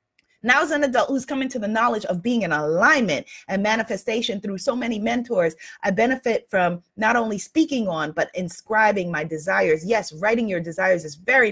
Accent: American